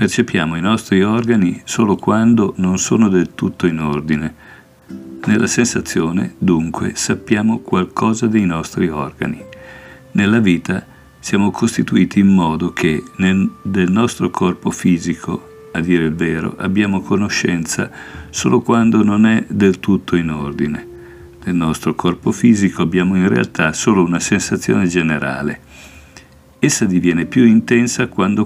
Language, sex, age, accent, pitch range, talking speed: Italian, male, 50-69, native, 80-100 Hz, 130 wpm